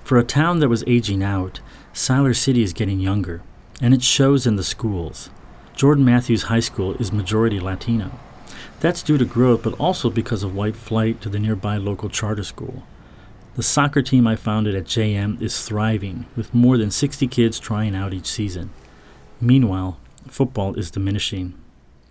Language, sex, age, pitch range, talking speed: English, male, 40-59, 95-120 Hz, 170 wpm